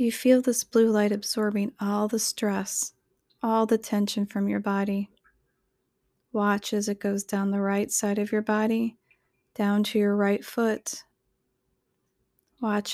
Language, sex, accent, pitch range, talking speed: English, female, American, 205-230 Hz, 150 wpm